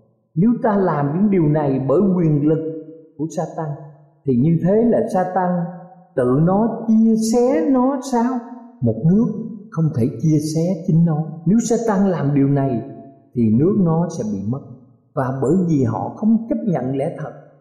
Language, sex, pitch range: Thai, male, 135-210 Hz